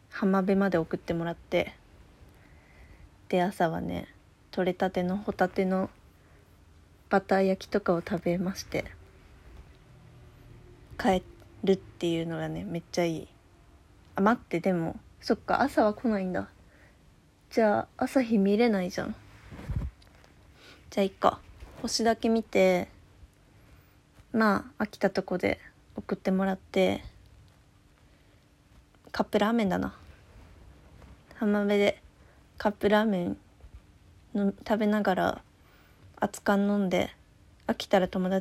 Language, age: Japanese, 20-39